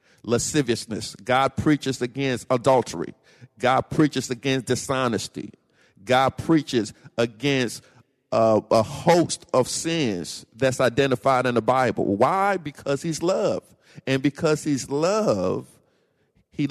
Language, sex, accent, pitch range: English, male, American, 125-160 Hz